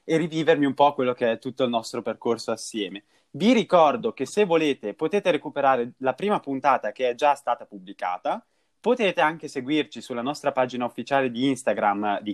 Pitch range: 115-150 Hz